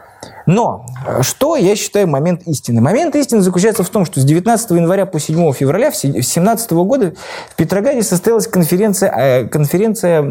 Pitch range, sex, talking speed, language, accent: 155-215 Hz, male, 145 wpm, Russian, native